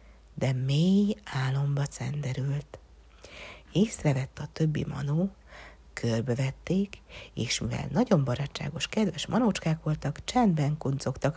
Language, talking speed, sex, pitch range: Hungarian, 100 wpm, female, 135-170 Hz